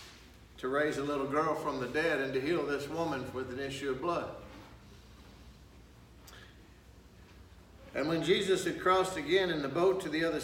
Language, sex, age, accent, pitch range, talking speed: English, male, 60-79, American, 135-185 Hz, 170 wpm